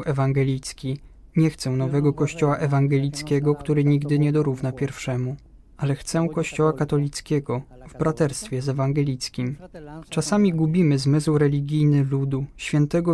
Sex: male